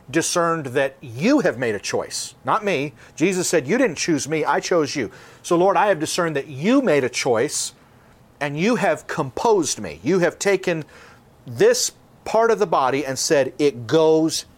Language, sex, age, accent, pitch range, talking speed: English, male, 40-59, American, 125-160 Hz, 185 wpm